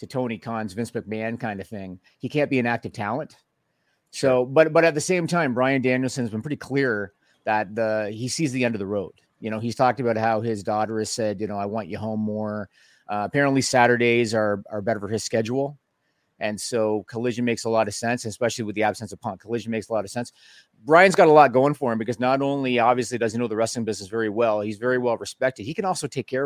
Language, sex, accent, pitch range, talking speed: English, male, American, 110-135 Hz, 250 wpm